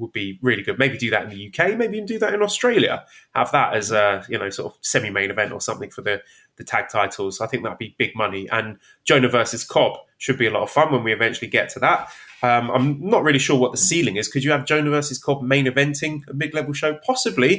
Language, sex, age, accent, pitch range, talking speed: English, male, 20-39, British, 115-150 Hz, 265 wpm